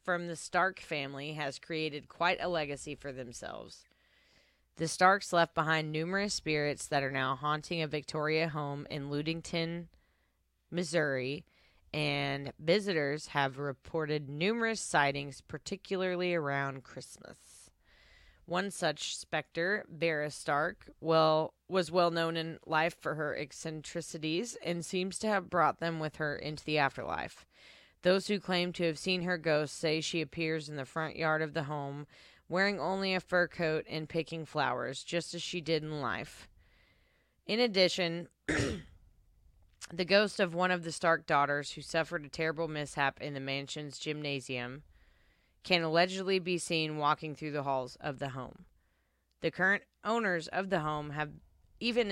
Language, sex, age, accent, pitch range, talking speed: English, female, 20-39, American, 145-175 Hz, 150 wpm